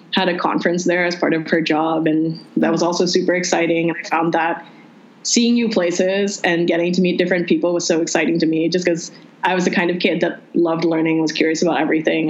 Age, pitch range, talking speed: 20-39, 165-185 Hz, 235 wpm